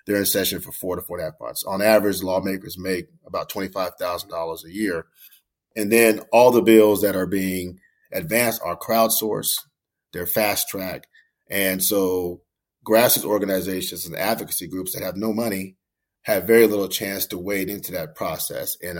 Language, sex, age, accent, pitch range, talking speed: English, male, 30-49, American, 95-120 Hz, 180 wpm